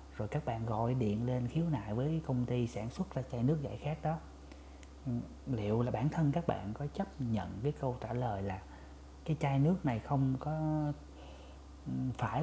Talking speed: 195 wpm